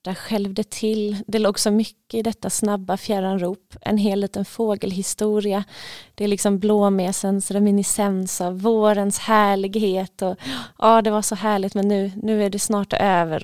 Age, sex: 20-39, female